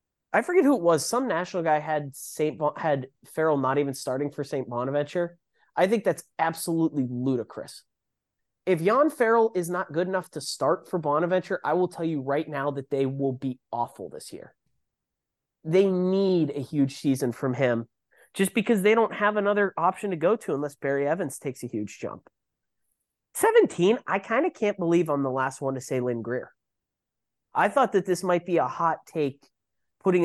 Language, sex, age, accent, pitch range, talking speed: English, male, 30-49, American, 140-185 Hz, 190 wpm